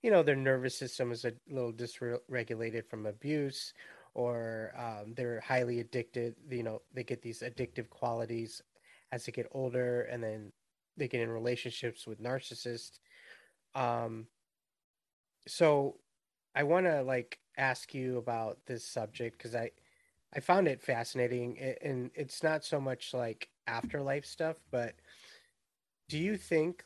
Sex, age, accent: male, 30-49, American